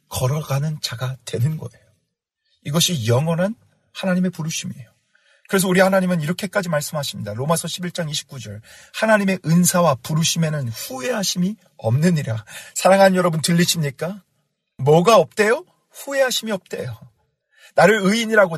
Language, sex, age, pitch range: Korean, male, 40-59, 150-225 Hz